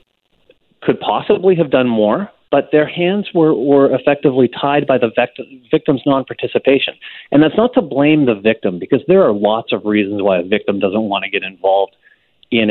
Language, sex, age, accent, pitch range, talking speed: English, male, 30-49, American, 105-135 Hz, 185 wpm